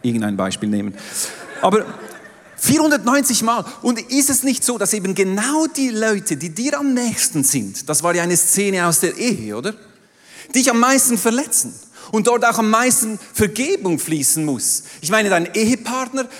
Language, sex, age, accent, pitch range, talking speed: German, male, 40-59, German, 145-235 Hz, 170 wpm